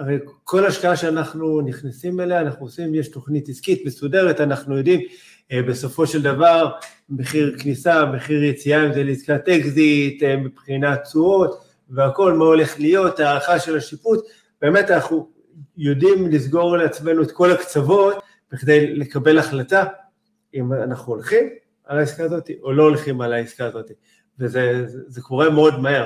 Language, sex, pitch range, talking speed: Hebrew, male, 135-175 Hz, 150 wpm